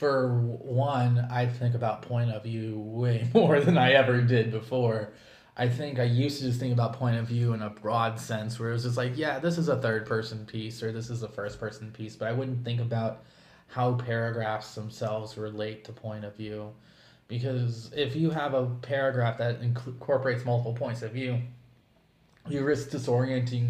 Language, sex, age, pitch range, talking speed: English, male, 20-39, 110-130 Hz, 190 wpm